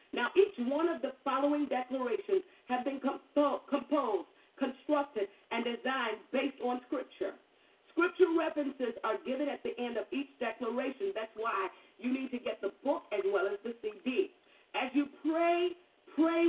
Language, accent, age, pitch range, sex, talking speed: English, American, 50-69, 225-335 Hz, female, 155 wpm